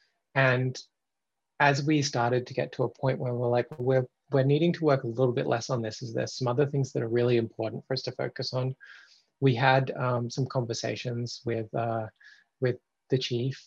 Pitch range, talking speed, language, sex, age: 120-130 Hz, 205 wpm, English, male, 20-39